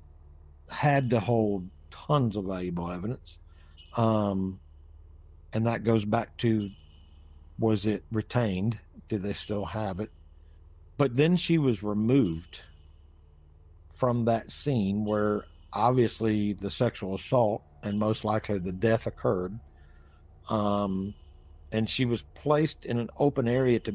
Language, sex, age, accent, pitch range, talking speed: English, male, 60-79, American, 80-120 Hz, 125 wpm